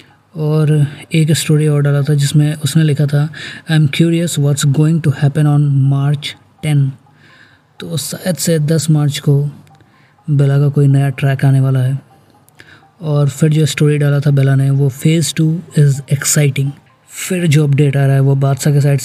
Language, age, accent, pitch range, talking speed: Hindi, 20-39, native, 140-150 Hz, 180 wpm